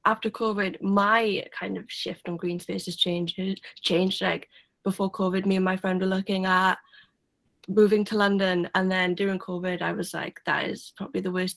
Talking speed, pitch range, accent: 185 wpm, 190-220 Hz, British